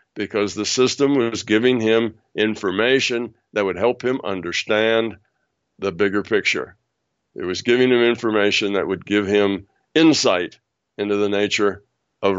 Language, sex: English, male